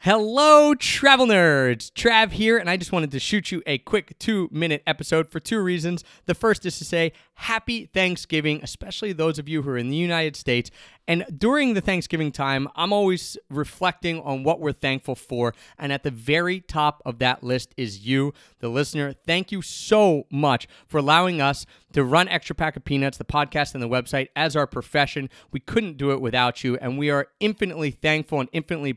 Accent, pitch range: American, 140-180 Hz